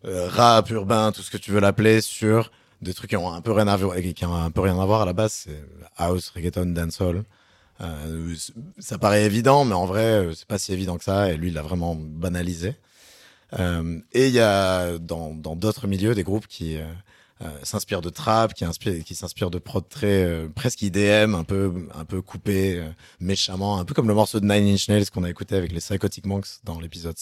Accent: French